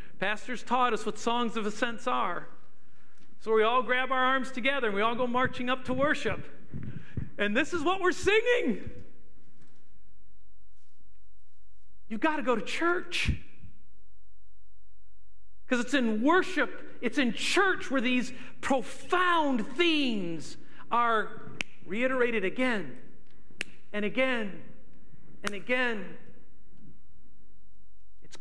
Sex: male